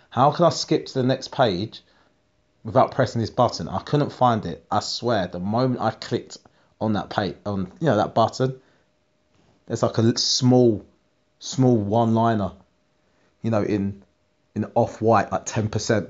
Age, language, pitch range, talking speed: 30-49, English, 100-125 Hz, 165 wpm